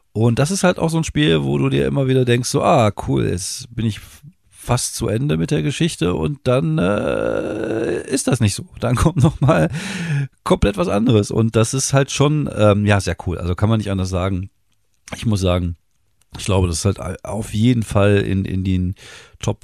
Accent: German